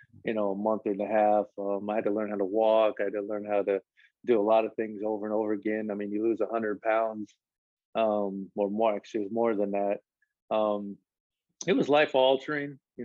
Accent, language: American, English